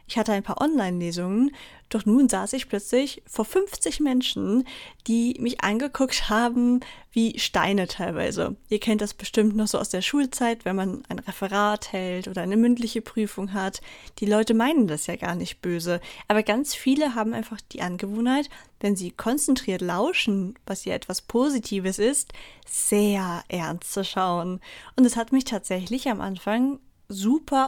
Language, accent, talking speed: German, German, 165 wpm